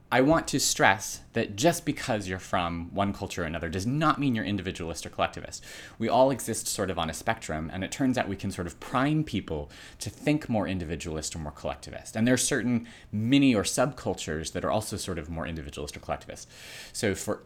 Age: 30-49